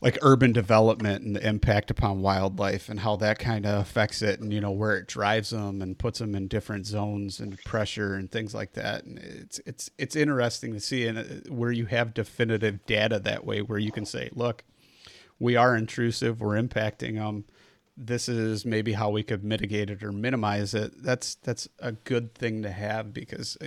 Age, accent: 30-49, American